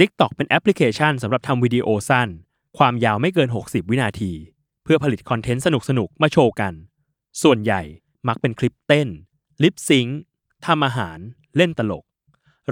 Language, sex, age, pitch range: Thai, male, 20-39, 115-150 Hz